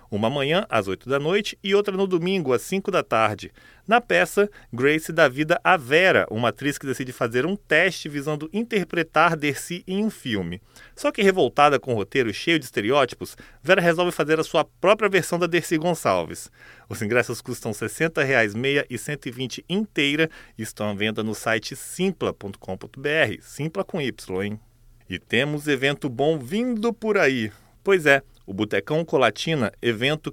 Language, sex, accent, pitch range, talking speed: Portuguese, male, Brazilian, 115-165 Hz, 170 wpm